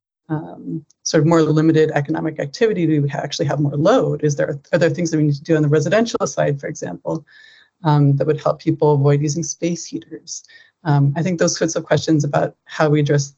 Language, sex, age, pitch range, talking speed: English, female, 30-49, 150-170 Hz, 220 wpm